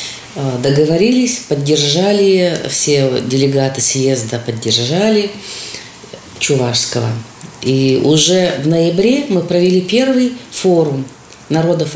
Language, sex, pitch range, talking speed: Russian, female, 130-180 Hz, 80 wpm